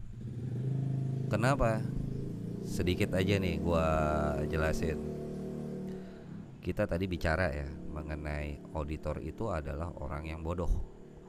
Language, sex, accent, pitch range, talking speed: Indonesian, male, native, 75-110 Hz, 90 wpm